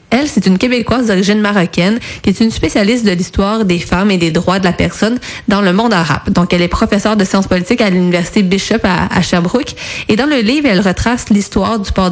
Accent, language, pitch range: Canadian, French, 180-215 Hz